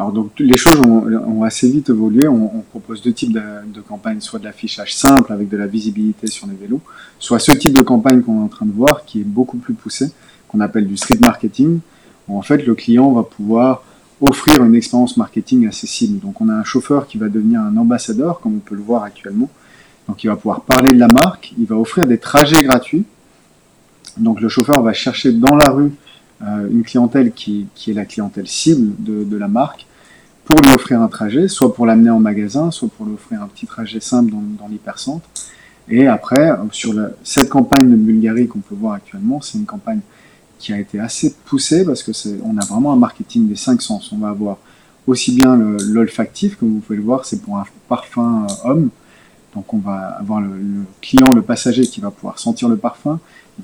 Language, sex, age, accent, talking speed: French, male, 30-49, French, 220 wpm